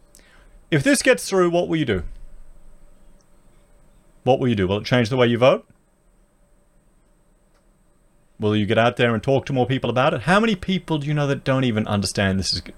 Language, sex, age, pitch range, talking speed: English, male, 30-49, 100-140 Hz, 200 wpm